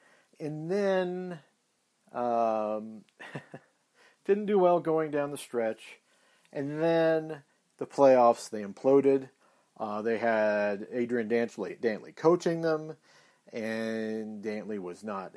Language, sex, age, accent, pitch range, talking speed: English, male, 40-59, American, 105-135 Hz, 105 wpm